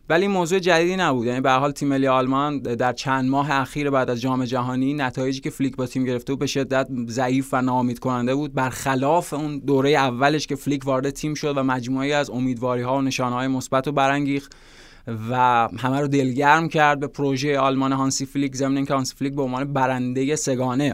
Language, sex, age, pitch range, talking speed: Persian, male, 20-39, 130-145 Hz, 195 wpm